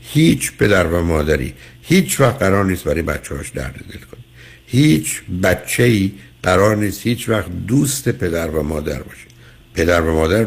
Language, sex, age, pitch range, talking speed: Persian, male, 60-79, 85-125 Hz, 165 wpm